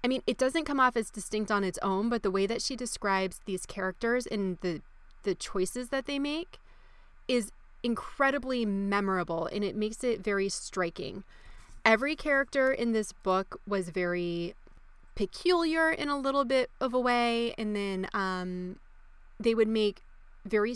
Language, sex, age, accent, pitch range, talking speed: English, female, 20-39, American, 190-235 Hz, 165 wpm